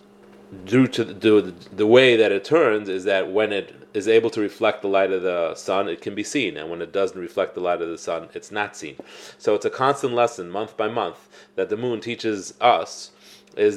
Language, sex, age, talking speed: English, male, 30-49, 235 wpm